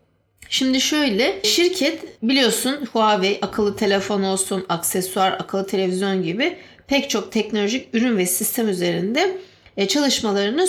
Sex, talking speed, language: female, 110 wpm, Turkish